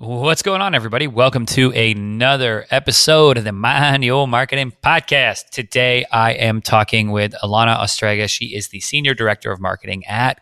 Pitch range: 110-135 Hz